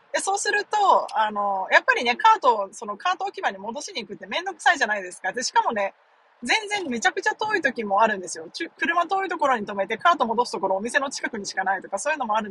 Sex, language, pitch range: female, Japanese, 195-300 Hz